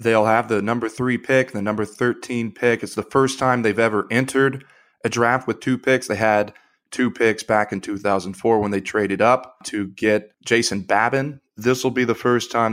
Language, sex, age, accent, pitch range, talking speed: English, male, 20-39, American, 105-120 Hz, 205 wpm